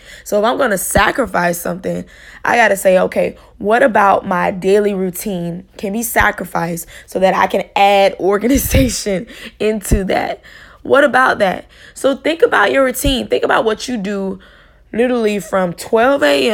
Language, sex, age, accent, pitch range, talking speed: English, female, 10-29, American, 180-220 Hz, 150 wpm